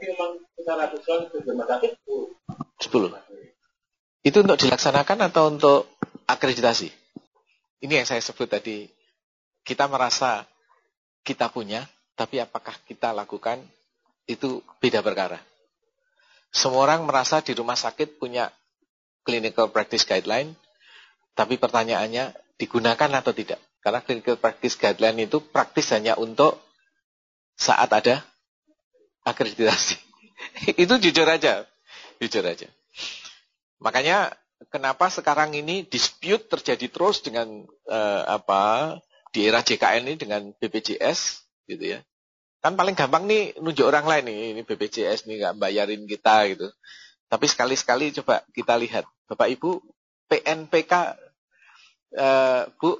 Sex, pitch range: male, 115-170 Hz